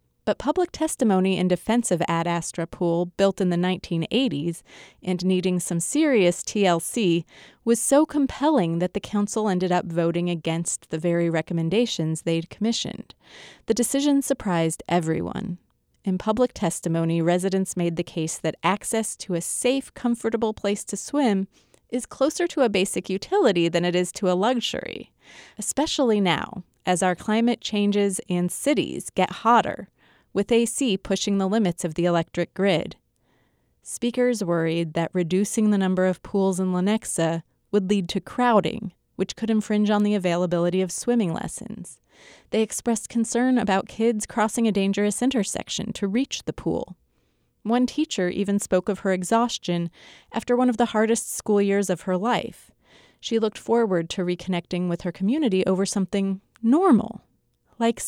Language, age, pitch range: English, 30-49, 175-230 Hz